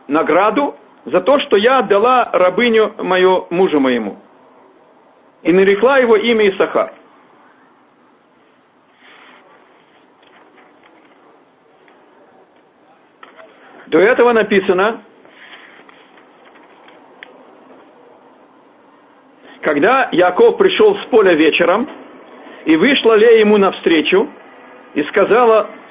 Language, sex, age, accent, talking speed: Russian, male, 50-69, native, 70 wpm